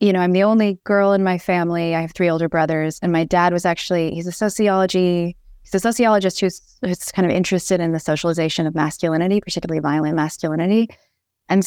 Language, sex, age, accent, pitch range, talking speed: English, female, 20-39, American, 155-185 Hz, 195 wpm